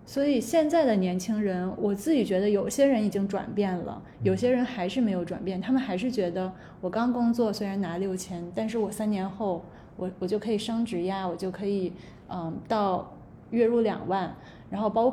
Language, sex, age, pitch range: Chinese, female, 20-39, 185-235 Hz